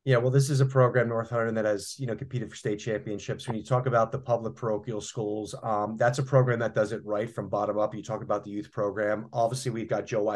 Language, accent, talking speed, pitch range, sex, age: English, American, 260 wpm, 115-145 Hz, male, 30-49